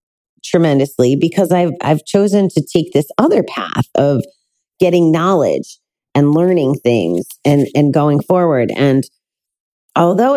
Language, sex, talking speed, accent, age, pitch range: English, female, 125 wpm, American, 30-49, 140-180 Hz